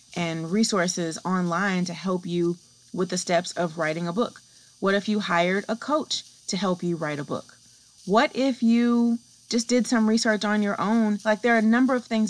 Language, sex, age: English, female, 30-49